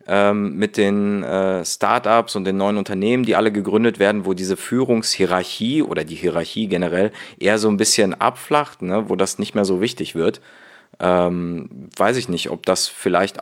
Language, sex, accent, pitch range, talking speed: German, male, German, 95-115 Hz, 175 wpm